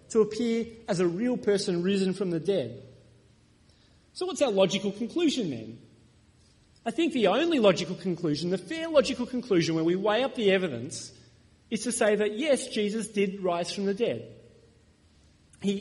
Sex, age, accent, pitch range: male, 30-49, Australian, 165-235 Hz